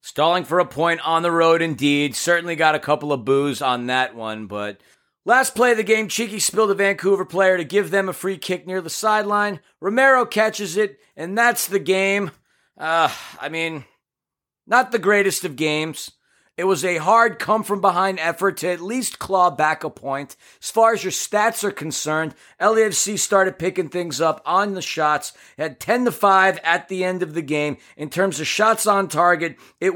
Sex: male